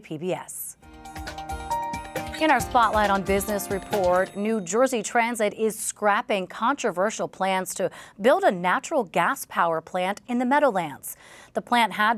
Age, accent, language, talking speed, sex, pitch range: 30-49, American, English, 135 wpm, female, 185-230 Hz